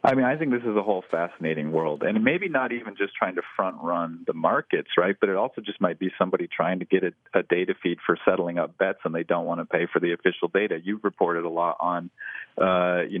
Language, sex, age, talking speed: English, male, 40-59, 255 wpm